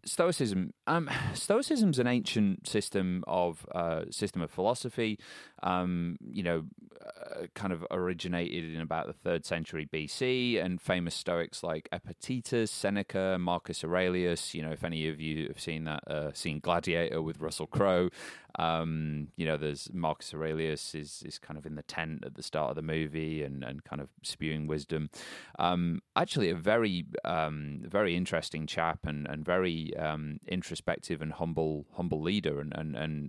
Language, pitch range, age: English, 80-90 Hz, 30-49